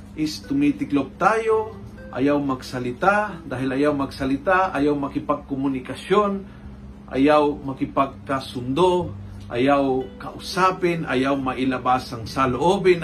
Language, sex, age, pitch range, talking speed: Filipino, male, 40-59, 120-175 Hz, 80 wpm